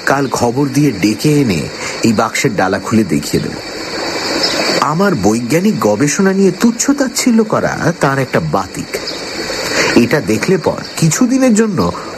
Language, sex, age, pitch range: Bengali, male, 60-79, 115-180 Hz